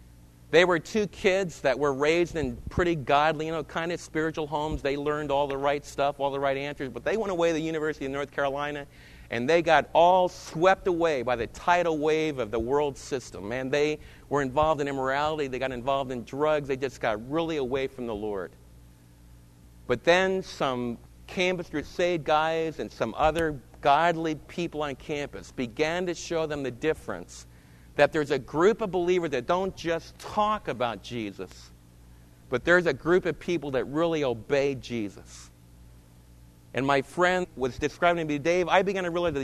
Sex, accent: male, American